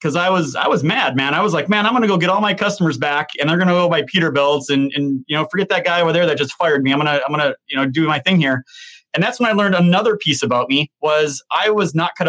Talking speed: 320 wpm